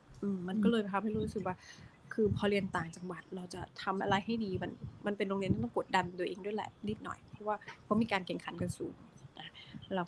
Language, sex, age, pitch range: Thai, female, 20-39, 190-225 Hz